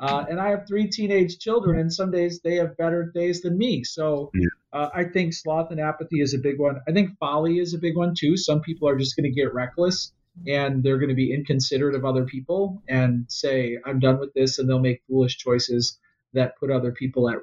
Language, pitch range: English, 130-160 Hz